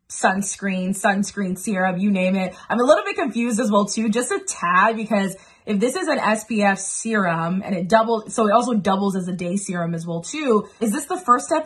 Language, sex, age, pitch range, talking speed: English, female, 20-39, 180-225 Hz, 220 wpm